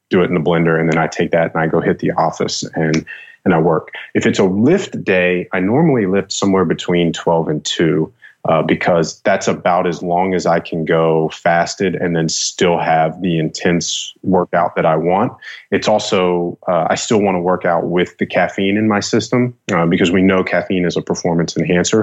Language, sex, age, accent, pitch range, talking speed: English, male, 30-49, American, 85-105 Hz, 210 wpm